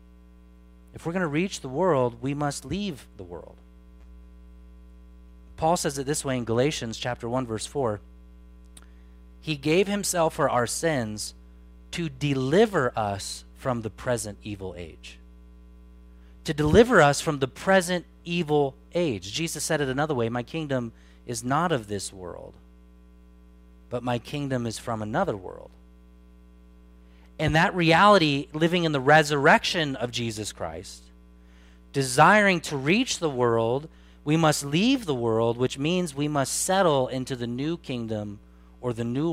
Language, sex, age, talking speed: English, male, 30-49, 145 wpm